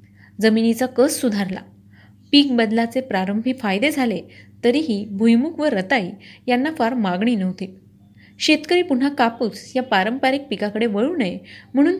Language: Marathi